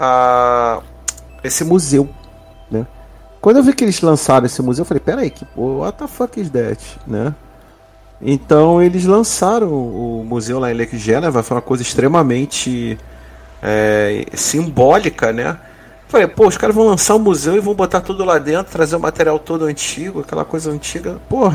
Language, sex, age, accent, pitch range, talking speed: Portuguese, male, 40-59, Brazilian, 125-190 Hz, 175 wpm